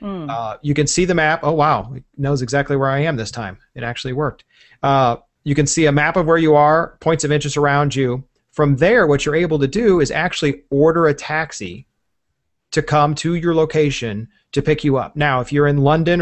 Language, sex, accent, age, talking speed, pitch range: English, male, American, 30-49, 220 wpm, 130-160 Hz